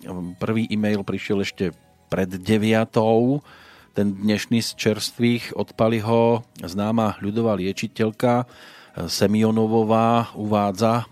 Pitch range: 100-115 Hz